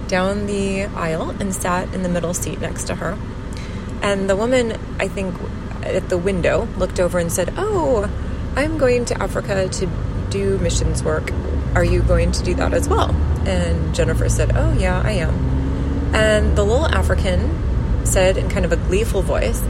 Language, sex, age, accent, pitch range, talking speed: English, female, 30-49, American, 80-100 Hz, 180 wpm